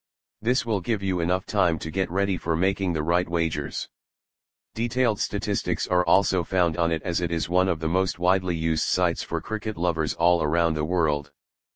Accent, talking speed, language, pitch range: American, 195 wpm, English, 80-95 Hz